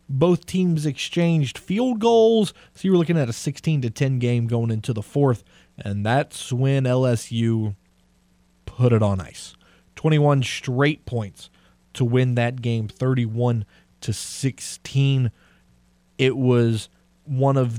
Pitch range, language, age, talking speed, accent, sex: 110-140 Hz, English, 20-39, 140 wpm, American, male